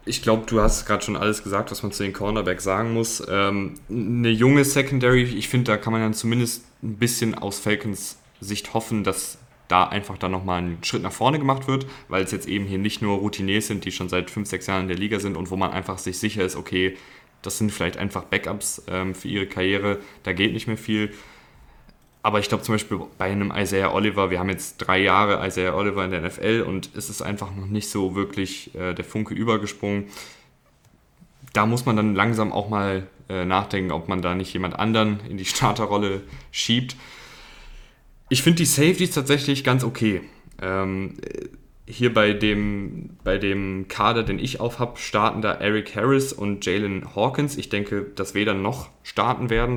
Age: 10-29